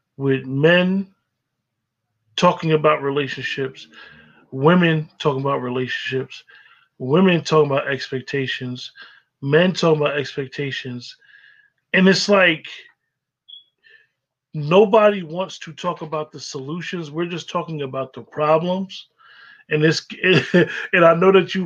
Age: 20-39